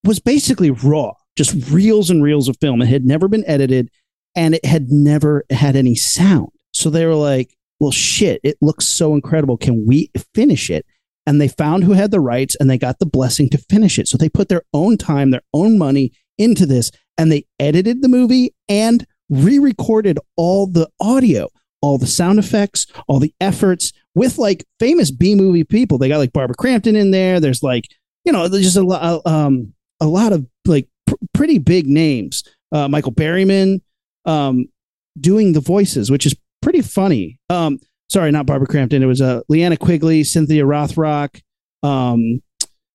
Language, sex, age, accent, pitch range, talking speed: English, male, 40-59, American, 140-190 Hz, 180 wpm